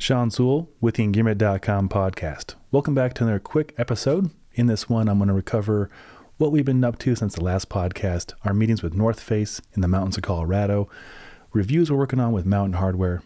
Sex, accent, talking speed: male, American, 205 wpm